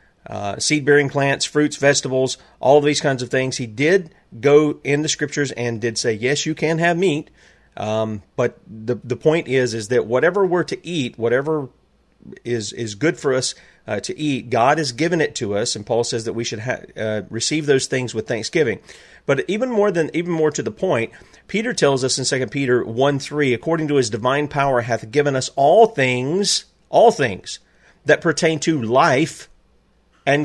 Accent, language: American, English